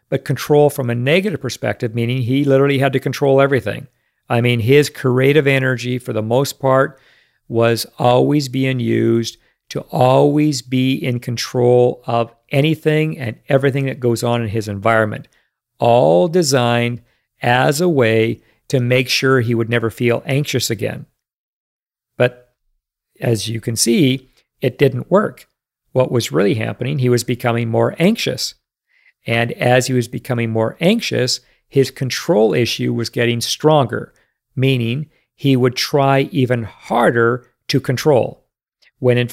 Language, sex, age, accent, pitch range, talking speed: English, male, 50-69, American, 120-140 Hz, 145 wpm